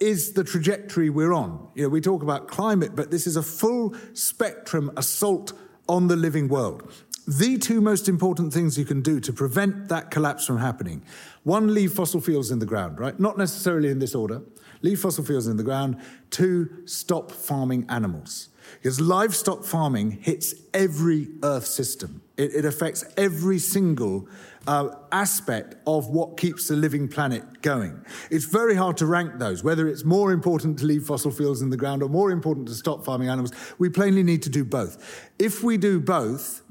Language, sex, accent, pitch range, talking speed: Dutch, male, British, 135-180 Hz, 185 wpm